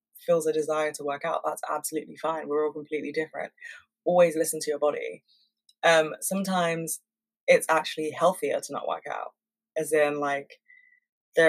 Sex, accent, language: female, British, English